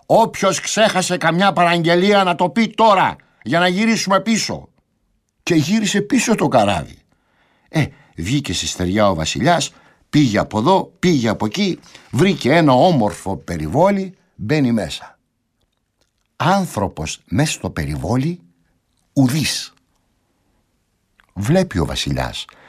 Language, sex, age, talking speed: Greek, male, 60-79, 115 wpm